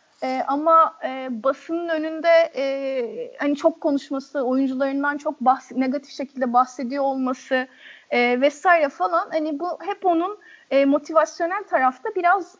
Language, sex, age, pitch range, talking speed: Turkish, female, 30-49, 265-330 Hz, 130 wpm